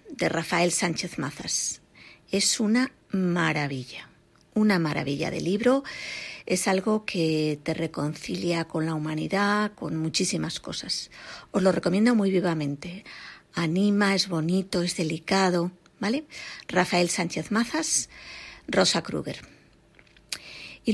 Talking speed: 110 wpm